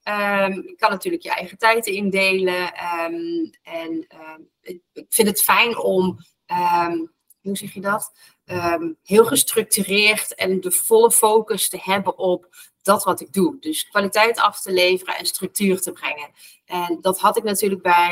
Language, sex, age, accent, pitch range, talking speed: Dutch, female, 30-49, Dutch, 180-220 Hz, 165 wpm